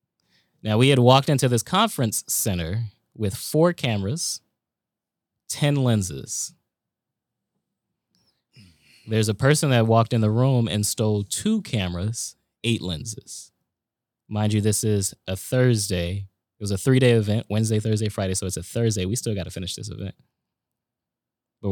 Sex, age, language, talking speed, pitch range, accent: male, 20-39, English, 145 wpm, 105-125 Hz, American